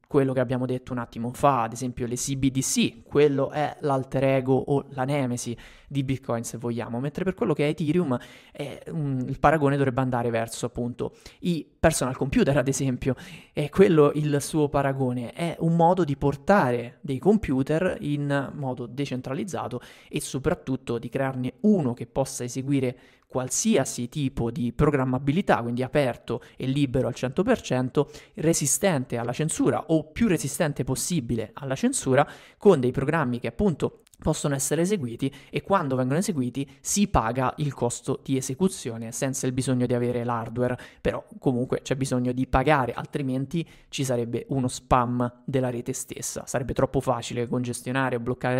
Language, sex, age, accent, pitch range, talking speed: Italian, male, 20-39, native, 125-150 Hz, 155 wpm